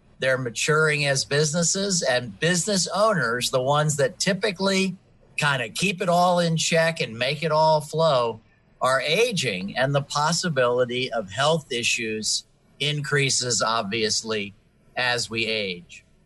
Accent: American